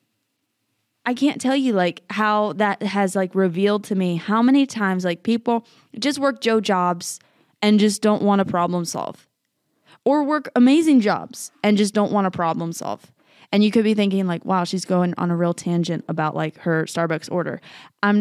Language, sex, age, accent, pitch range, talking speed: English, female, 20-39, American, 175-215 Hz, 190 wpm